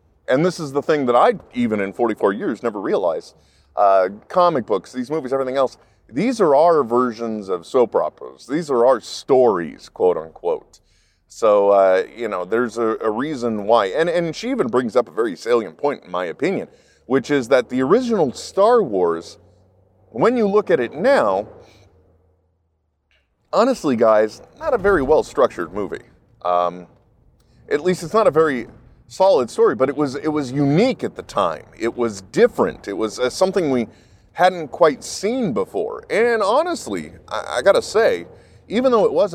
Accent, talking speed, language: American, 175 wpm, English